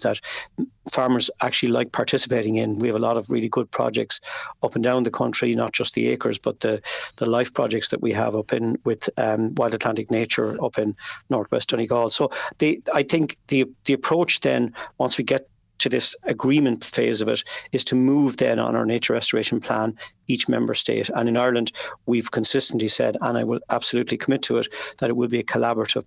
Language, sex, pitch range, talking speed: English, male, 115-135 Hz, 205 wpm